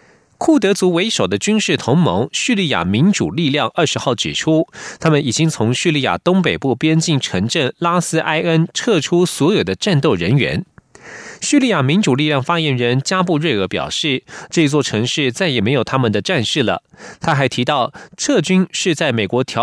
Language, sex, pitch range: German, male, 130-175 Hz